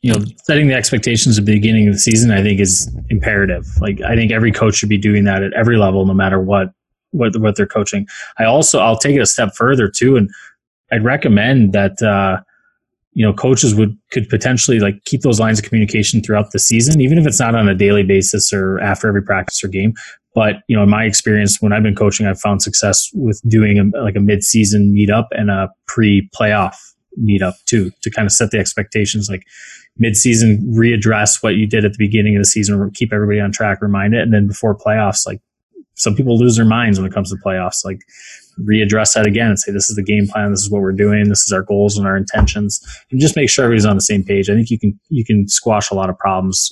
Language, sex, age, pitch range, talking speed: English, male, 20-39, 100-110 Hz, 240 wpm